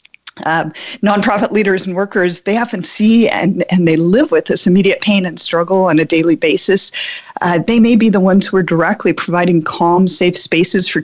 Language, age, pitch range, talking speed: English, 40-59, 170-210 Hz, 195 wpm